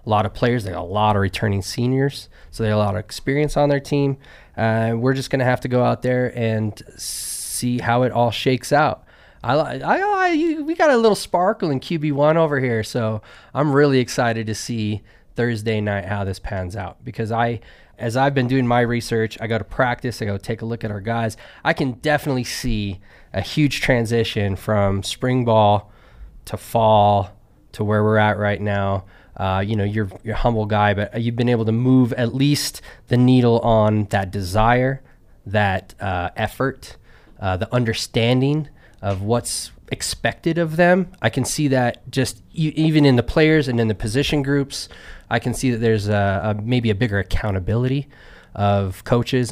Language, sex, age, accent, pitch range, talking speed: English, male, 20-39, American, 105-135 Hz, 195 wpm